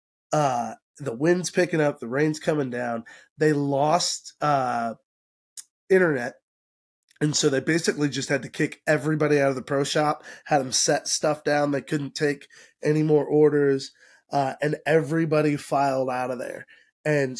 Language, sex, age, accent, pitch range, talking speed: English, male, 20-39, American, 135-165 Hz, 160 wpm